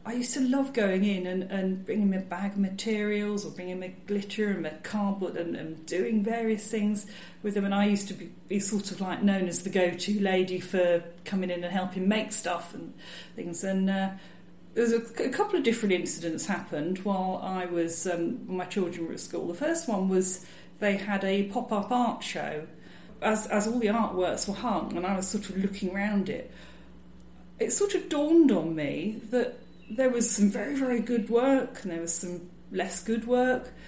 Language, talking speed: English, 205 wpm